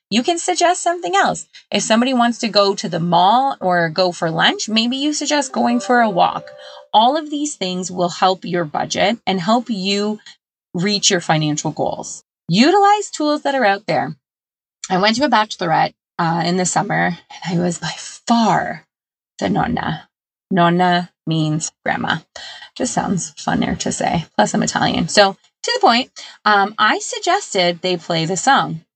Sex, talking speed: female, 170 wpm